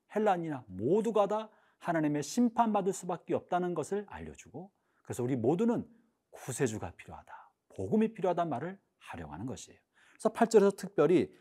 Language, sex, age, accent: Korean, male, 40-59, native